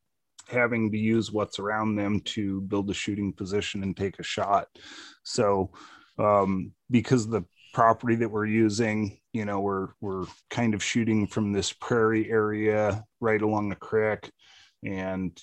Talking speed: 150 wpm